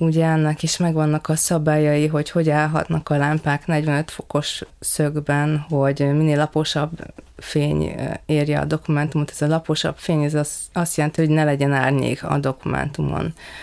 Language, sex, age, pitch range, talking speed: Hungarian, female, 20-39, 145-170 Hz, 155 wpm